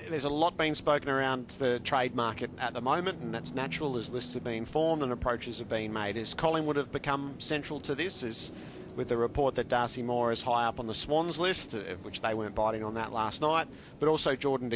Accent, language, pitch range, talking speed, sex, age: Australian, English, 115-145 Hz, 230 wpm, male, 30-49